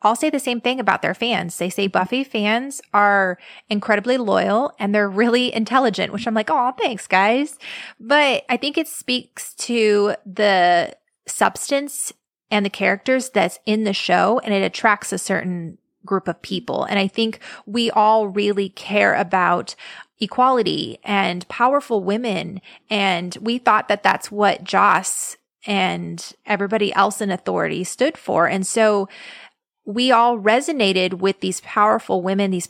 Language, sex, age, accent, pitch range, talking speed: English, female, 20-39, American, 190-230 Hz, 155 wpm